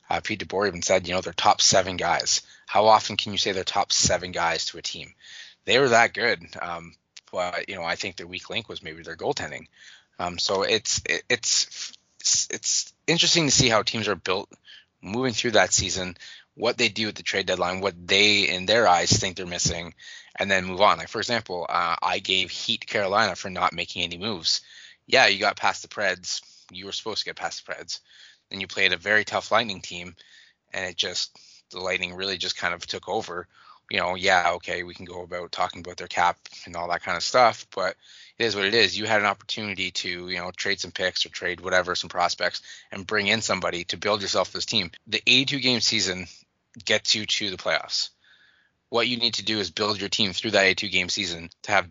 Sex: male